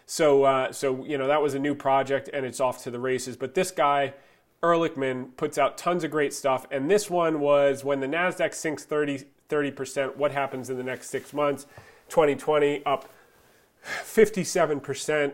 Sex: male